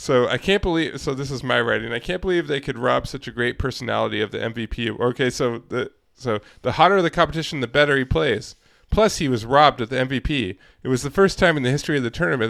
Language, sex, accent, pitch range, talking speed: English, male, American, 120-150 Hz, 250 wpm